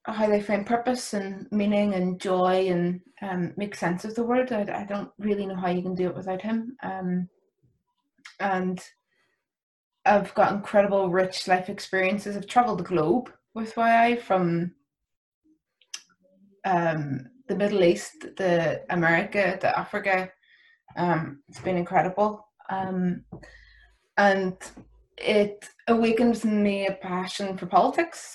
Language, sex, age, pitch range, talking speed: English, female, 20-39, 185-230 Hz, 135 wpm